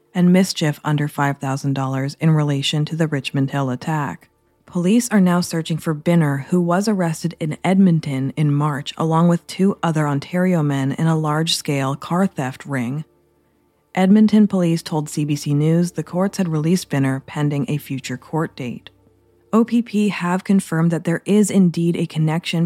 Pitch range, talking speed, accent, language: 150-180 Hz, 160 wpm, American, English